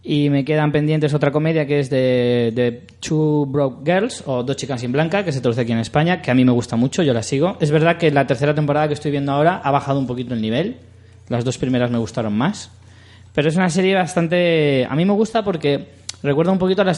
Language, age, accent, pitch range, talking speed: Spanish, 20-39, Spanish, 115-155 Hz, 245 wpm